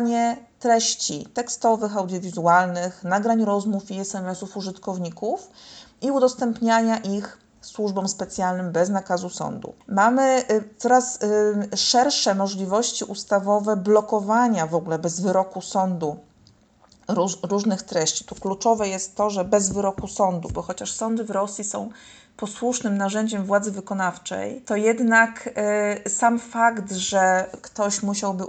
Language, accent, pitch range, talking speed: Polish, native, 180-220 Hz, 115 wpm